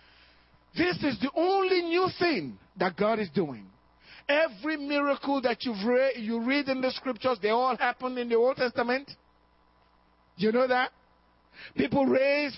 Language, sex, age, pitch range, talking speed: English, male, 50-69, 165-275 Hz, 155 wpm